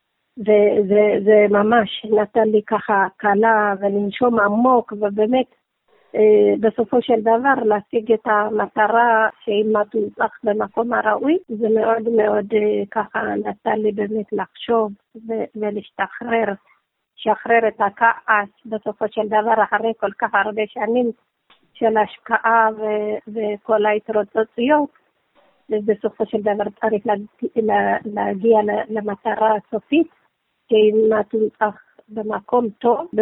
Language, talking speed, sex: Hebrew, 115 wpm, female